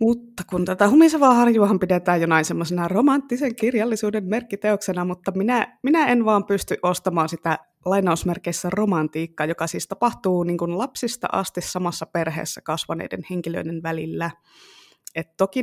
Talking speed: 130 wpm